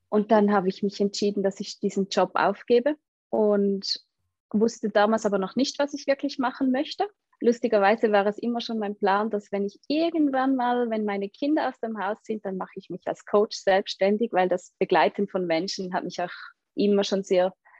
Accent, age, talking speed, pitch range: German, 20-39, 200 wpm, 195-225 Hz